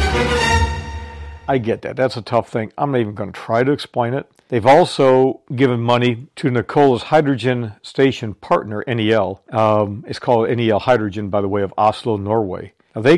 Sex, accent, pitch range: male, American, 105-125 Hz